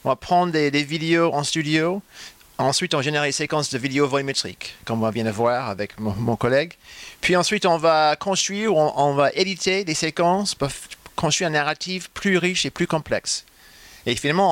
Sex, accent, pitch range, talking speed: male, French, 125-165 Hz, 200 wpm